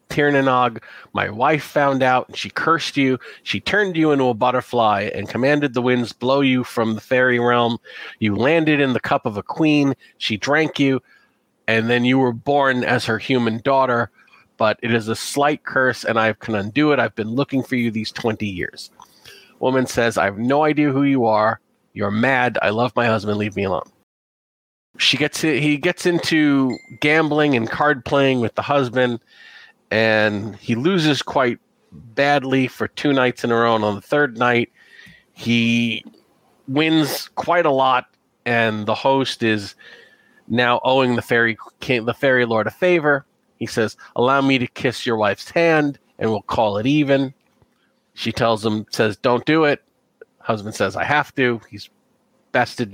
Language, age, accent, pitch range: English, 40-59, American, 115-140 Hz